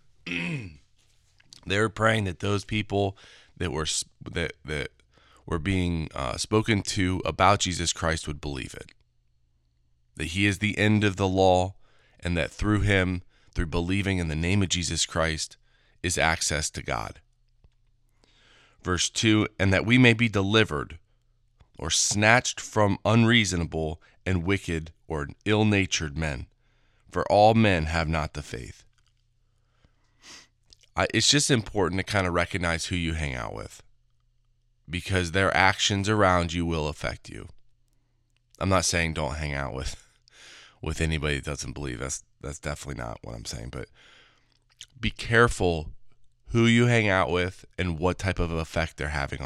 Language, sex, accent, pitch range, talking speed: English, male, American, 80-115 Hz, 150 wpm